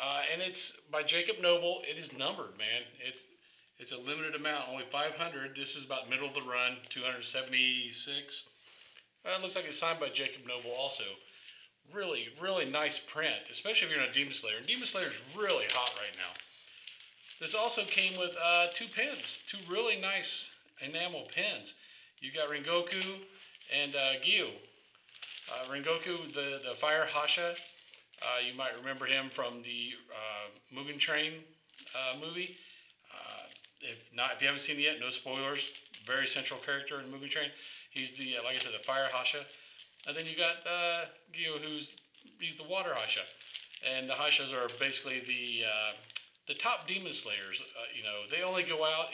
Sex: male